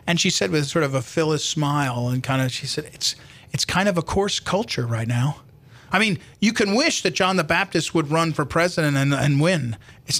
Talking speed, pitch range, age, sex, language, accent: 235 wpm, 135-180 Hz, 40-59, male, English, American